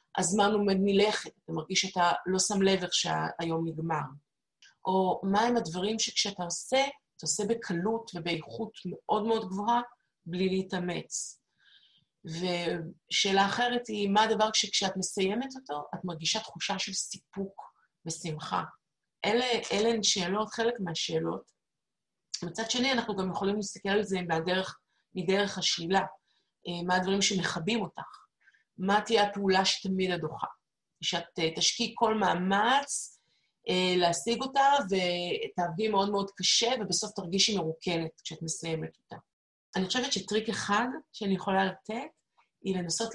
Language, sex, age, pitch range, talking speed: Hebrew, female, 30-49, 170-210 Hz, 125 wpm